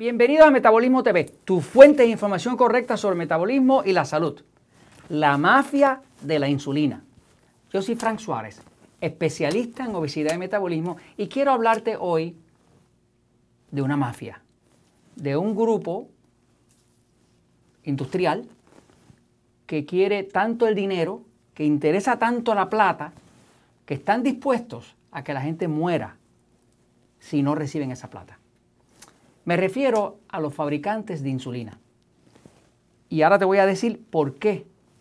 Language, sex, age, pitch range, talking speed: Spanish, male, 40-59, 145-210 Hz, 135 wpm